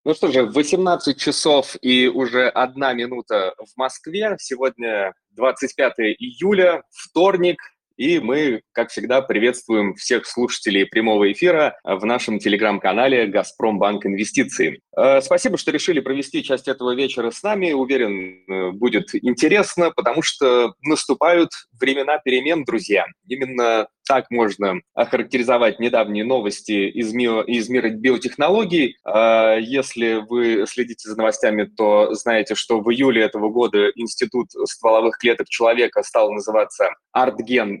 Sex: male